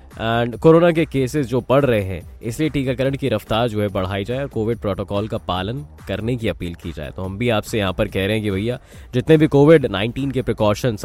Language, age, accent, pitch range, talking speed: Hindi, 10-29, native, 100-135 Hz, 235 wpm